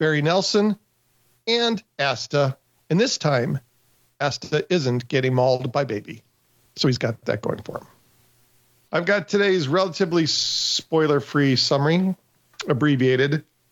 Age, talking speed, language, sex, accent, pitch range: 50-69, 120 wpm, English, male, American, 140-180 Hz